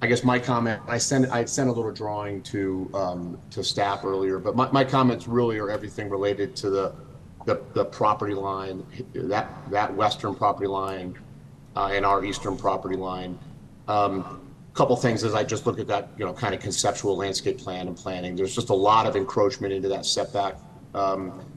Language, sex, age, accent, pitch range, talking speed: English, male, 40-59, American, 95-120 Hz, 195 wpm